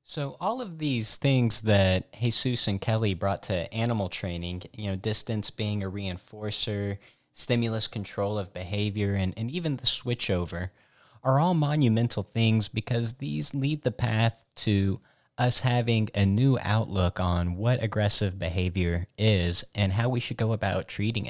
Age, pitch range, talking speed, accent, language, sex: 30-49, 100-125 Hz, 155 wpm, American, English, male